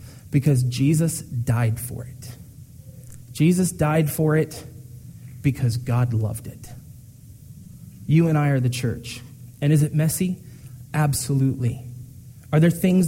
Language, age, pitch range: English, 30-49, 125-160 Hz